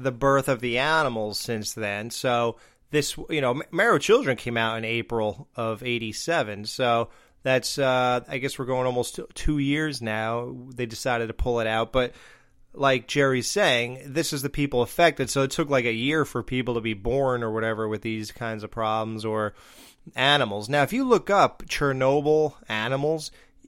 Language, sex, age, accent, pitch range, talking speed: English, male, 30-49, American, 115-140 Hz, 185 wpm